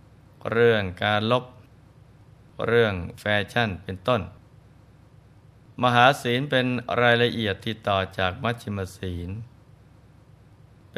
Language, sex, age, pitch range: Thai, male, 20-39, 105-125 Hz